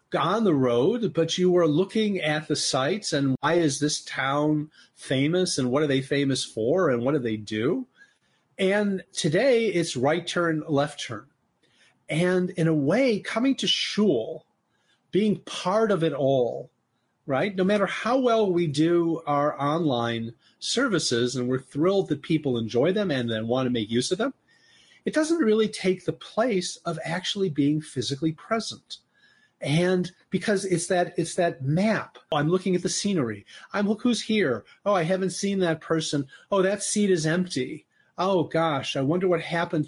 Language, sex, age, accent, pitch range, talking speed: English, male, 40-59, American, 145-195 Hz, 175 wpm